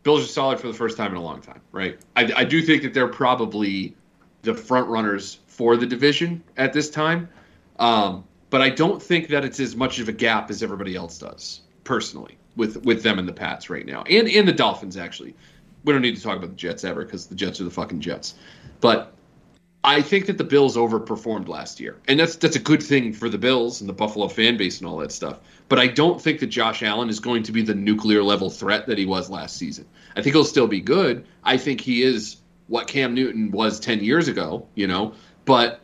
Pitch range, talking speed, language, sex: 110-145 Hz, 235 wpm, English, male